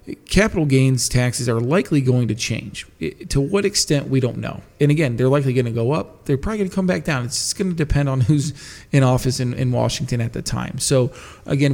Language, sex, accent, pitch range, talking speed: English, male, American, 120-135 Hz, 235 wpm